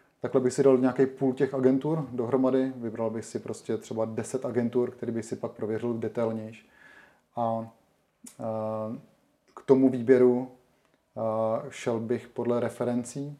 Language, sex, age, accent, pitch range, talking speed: Czech, male, 30-49, native, 115-130 Hz, 145 wpm